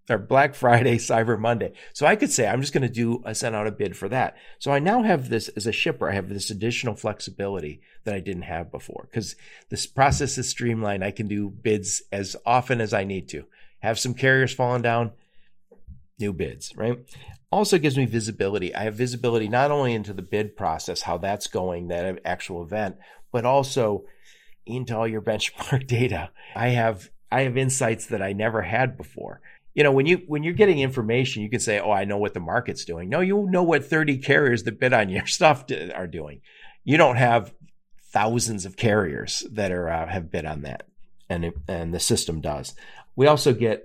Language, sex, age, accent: English, male, 50-69, American